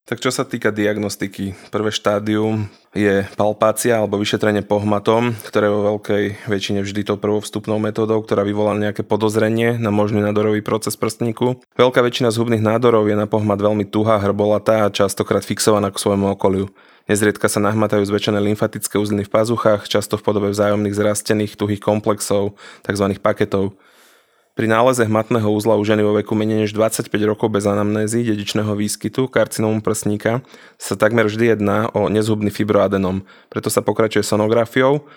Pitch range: 105-110 Hz